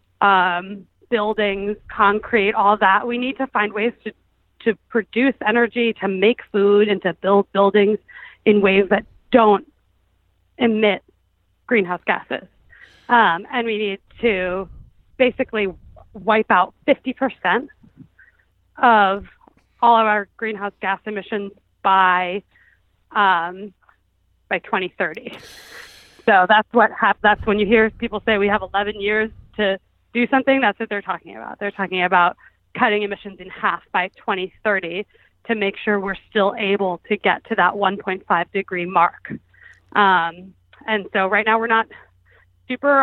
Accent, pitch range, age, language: American, 190-220 Hz, 30-49, English